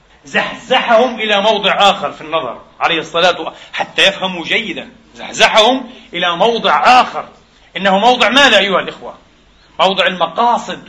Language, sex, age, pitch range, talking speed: Arabic, male, 40-59, 190-235 Hz, 120 wpm